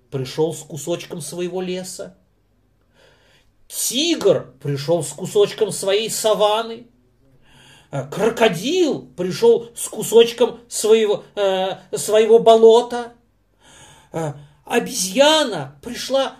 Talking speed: 75 wpm